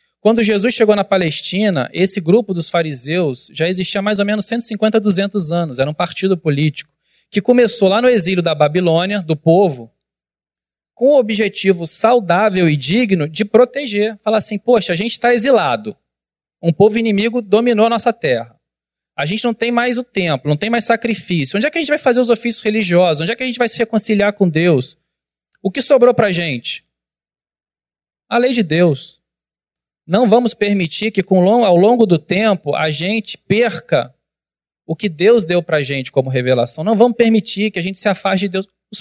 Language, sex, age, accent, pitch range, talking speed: Portuguese, male, 20-39, Brazilian, 155-225 Hz, 190 wpm